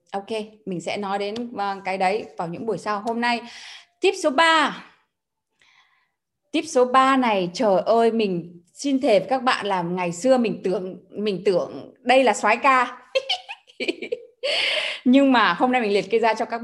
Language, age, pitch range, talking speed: Vietnamese, 20-39, 185-260 Hz, 175 wpm